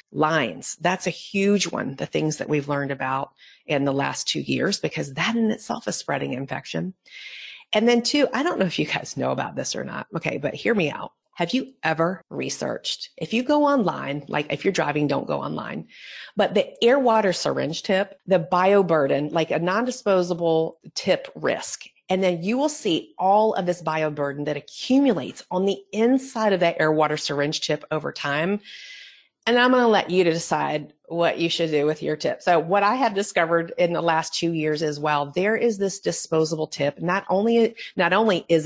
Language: English